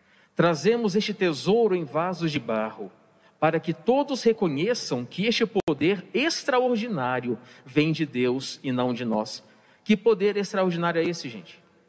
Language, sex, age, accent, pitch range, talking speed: Portuguese, male, 50-69, Brazilian, 130-170 Hz, 140 wpm